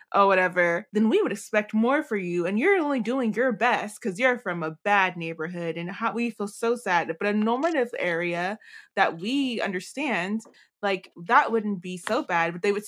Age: 20-39